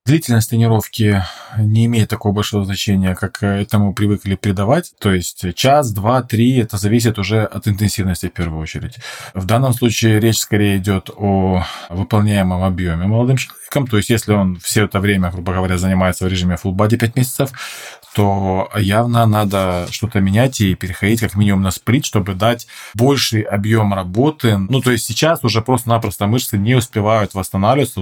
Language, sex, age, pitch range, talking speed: Russian, male, 20-39, 100-120 Hz, 165 wpm